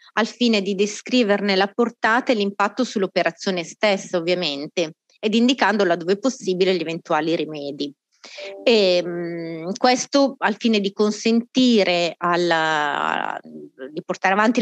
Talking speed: 125 wpm